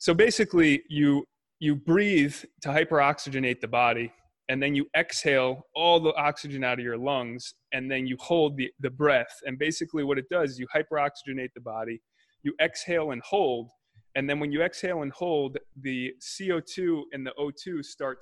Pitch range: 125-160 Hz